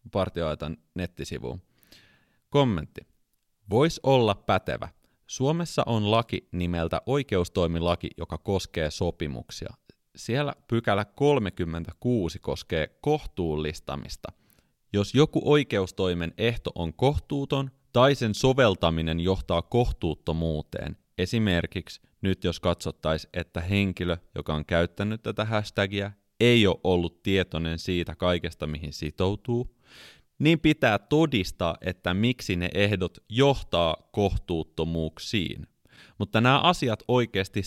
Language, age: Finnish, 30-49